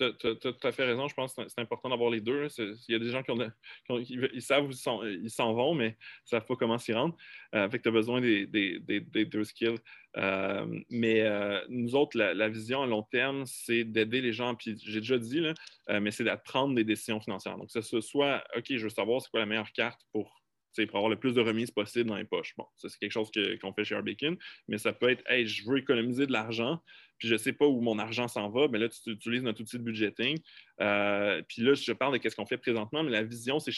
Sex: male